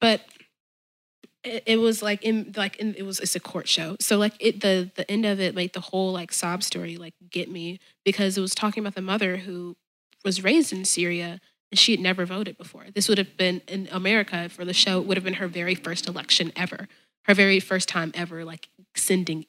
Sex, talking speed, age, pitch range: female, 225 wpm, 20-39, 175-205 Hz